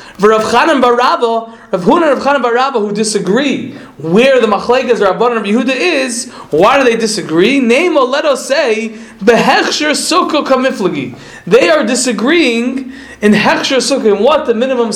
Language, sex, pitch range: English, male, 205-265 Hz